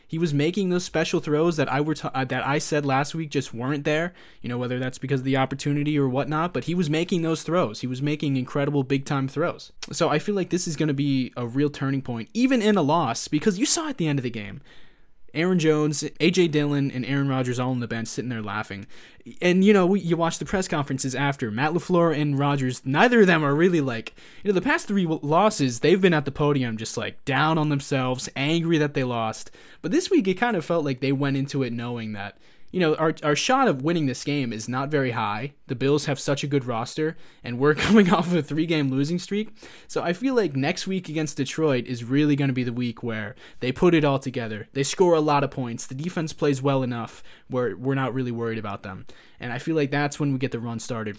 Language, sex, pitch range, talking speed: English, male, 130-175 Hz, 250 wpm